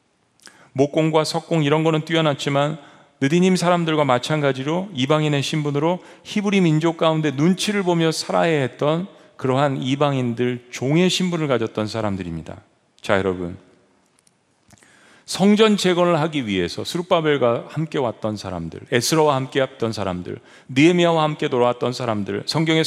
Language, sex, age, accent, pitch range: Korean, male, 40-59, native, 135-180 Hz